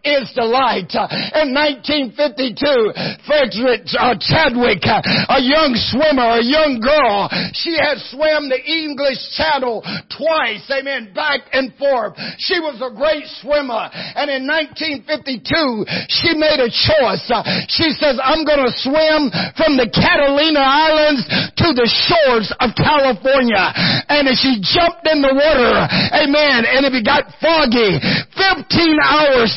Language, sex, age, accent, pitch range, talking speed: English, male, 50-69, American, 245-305 Hz, 130 wpm